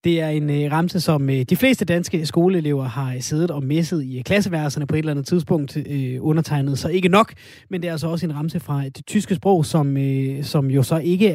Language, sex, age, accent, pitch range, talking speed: Danish, male, 30-49, native, 145-180 Hz, 205 wpm